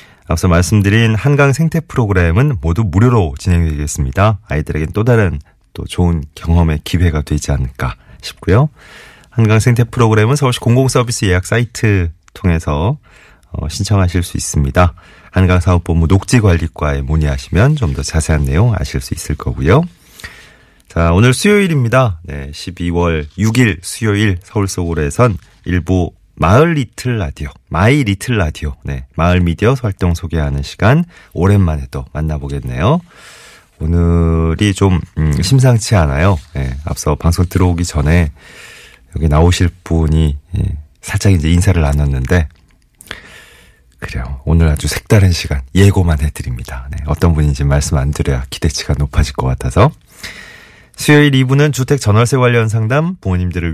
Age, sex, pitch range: 30-49, male, 80-110 Hz